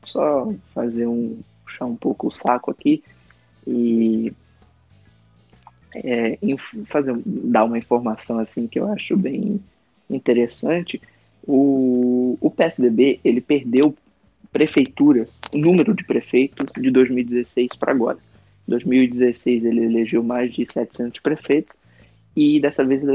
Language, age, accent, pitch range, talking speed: Portuguese, 20-39, Brazilian, 115-140 Hz, 115 wpm